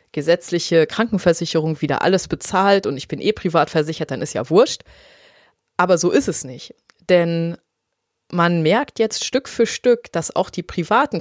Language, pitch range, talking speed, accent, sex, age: German, 160-195 Hz, 165 wpm, German, female, 30-49